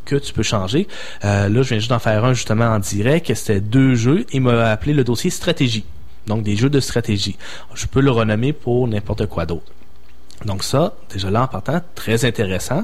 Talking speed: 210 wpm